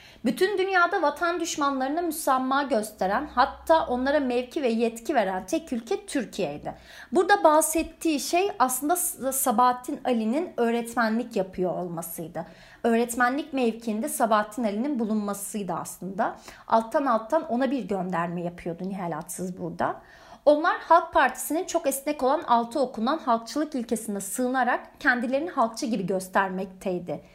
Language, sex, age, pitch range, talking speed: Turkish, female, 30-49, 215-310 Hz, 115 wpm